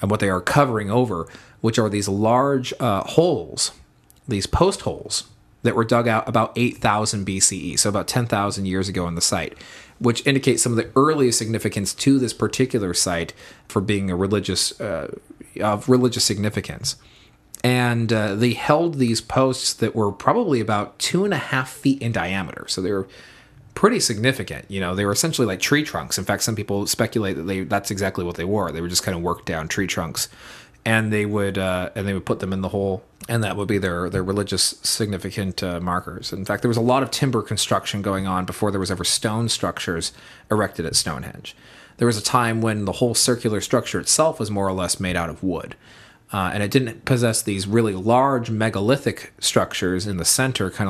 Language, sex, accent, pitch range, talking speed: English, male, American, 95-120 Hz, 205 wpm